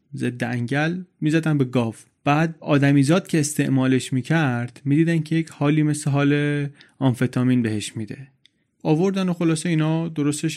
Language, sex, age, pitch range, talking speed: Persian, male, 30-49, 125-155 Hz, 135 wpm